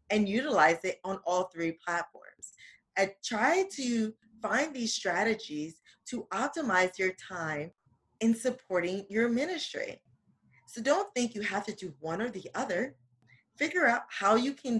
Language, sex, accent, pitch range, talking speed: English, female, American, 175-255 Hz, 150 wpm